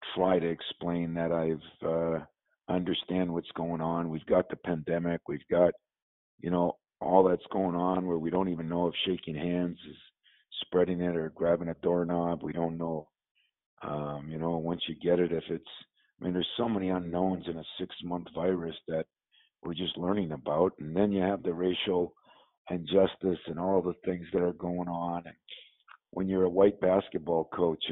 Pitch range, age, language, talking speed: 85-95 Hz, 50-69, English, 190 wpm